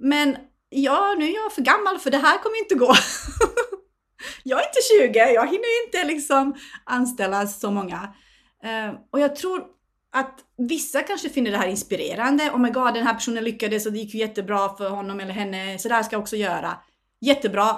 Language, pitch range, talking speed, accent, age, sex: Swedish, 215-280 Hz, 200 wpm, native, 30-49, female